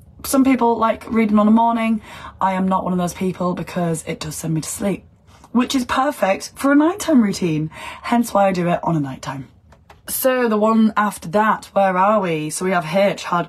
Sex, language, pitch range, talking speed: female, English, 160-210 Hz, 220 wpm